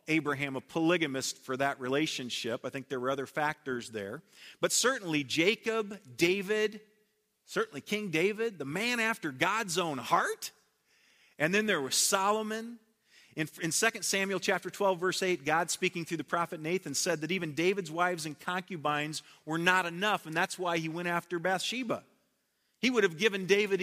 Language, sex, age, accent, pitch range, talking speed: English, male, 40-59, American, 155-210 Hz, 170 wpm